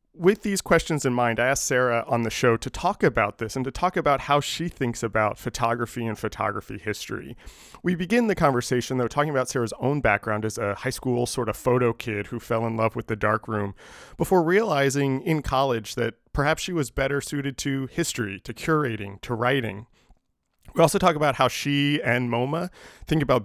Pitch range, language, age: 105-140 Hz, English, 30-49